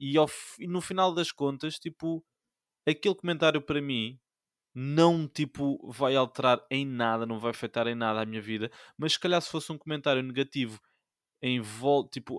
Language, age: Portuguese, 20-39